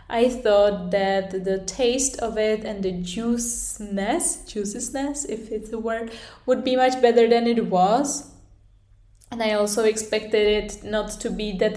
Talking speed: 160 wpm